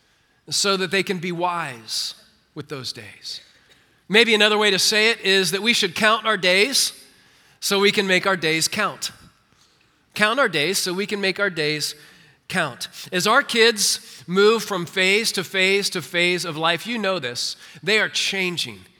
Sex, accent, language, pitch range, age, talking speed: male, American, English, 180-230 Hz, 40-59, 180 wpm